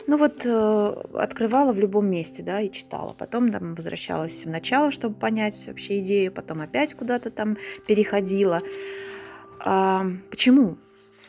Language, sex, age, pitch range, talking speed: English, female, 20-39, 185-245 Hz, 120 wpm